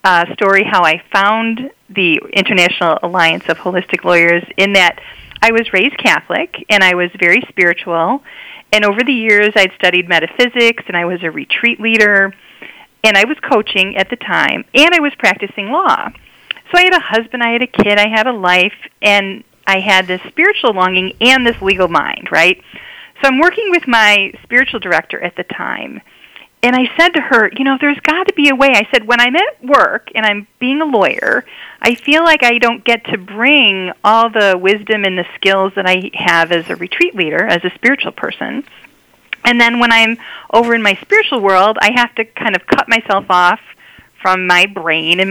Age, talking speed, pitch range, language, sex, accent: 40-59, 200 wpm, 185-250 Hz, English, female, American